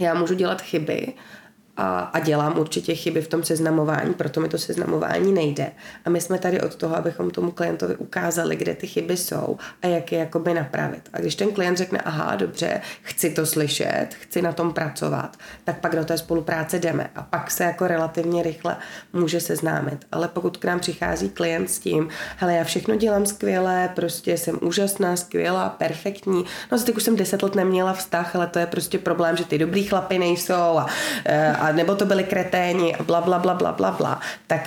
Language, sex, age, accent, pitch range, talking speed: Czech, female, 30-49, native, 160-180 Hz, 190 wpm